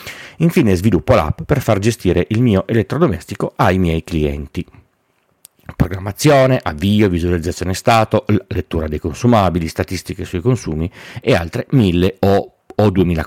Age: 40-59